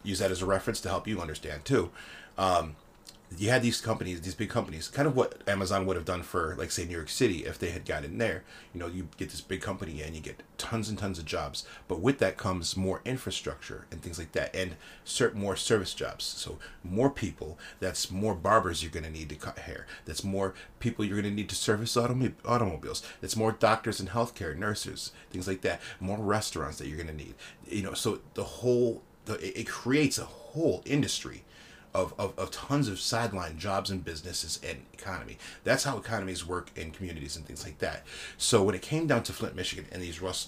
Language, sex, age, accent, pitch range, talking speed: English, male, 30-49, American, 90-115 Hz, 220 wpm